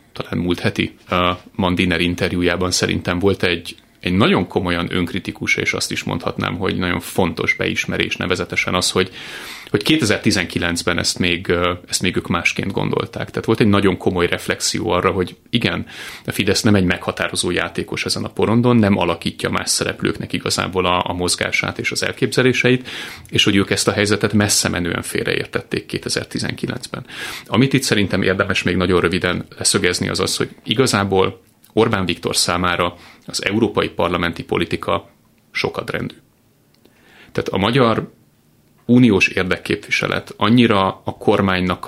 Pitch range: 90-110 Hz